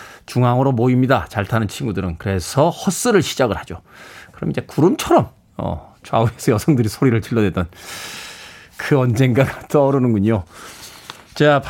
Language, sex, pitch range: Korean, male, 120-180 Hz